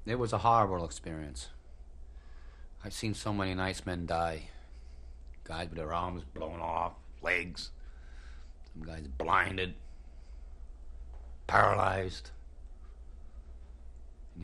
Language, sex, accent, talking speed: Danish, male, American, 100 wpm